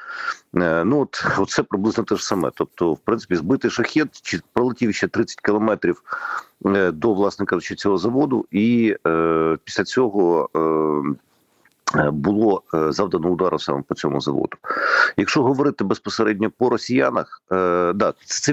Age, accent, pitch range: 50-69, native, 90-120 Hz